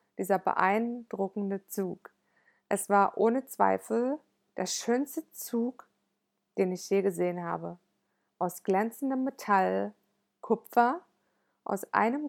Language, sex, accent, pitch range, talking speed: German, female, German, 195-245 Hz, 105 wpm